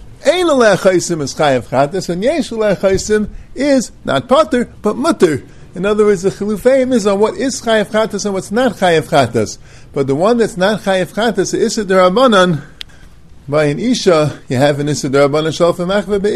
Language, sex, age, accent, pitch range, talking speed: English, male, 50-69, American, 140-215 Hz, 160 wpm